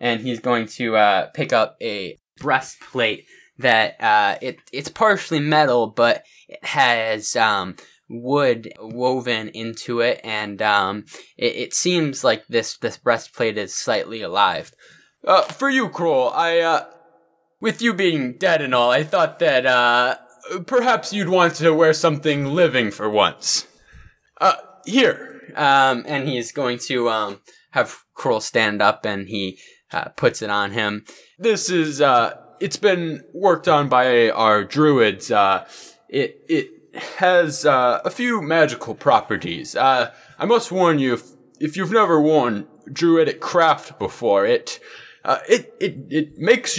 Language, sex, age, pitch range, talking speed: English, male, 10-29, 120-195 Hz, 150 wpm